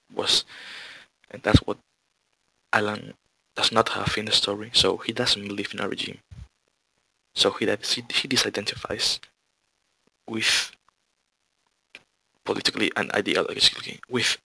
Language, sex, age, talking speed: English, male, 20-39, 115 wpm